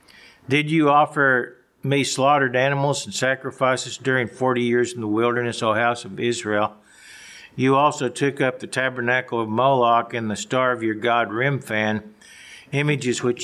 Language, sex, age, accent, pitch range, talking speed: English, male, 60-79, American, 115-135 Hz, 155 wpm